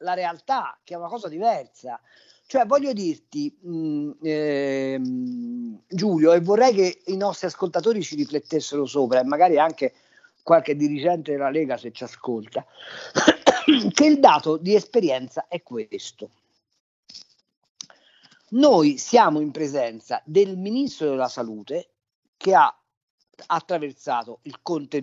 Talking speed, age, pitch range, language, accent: 125 wpm, 50-69, 145-210 Hz, Italian, native